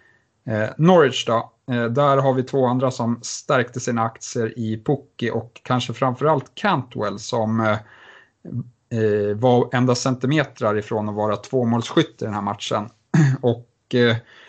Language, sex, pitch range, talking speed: Swedish, male, 110-130 Hz, 125 wpm